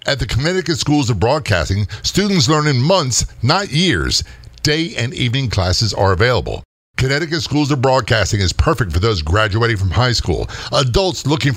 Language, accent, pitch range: English, American, 105-145 Hz